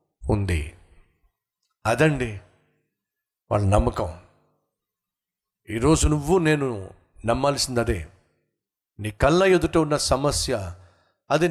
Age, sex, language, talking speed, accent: 50-69, male, Telugu, 80 wpm, native